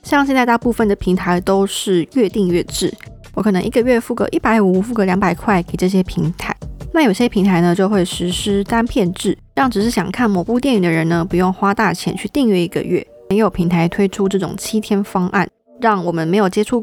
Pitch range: 180-220 Hz